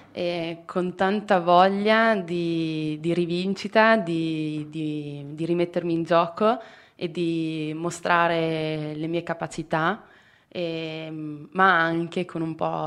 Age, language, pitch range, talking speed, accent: 20-39, Italian, 155-175 Hz, 105 wpm, native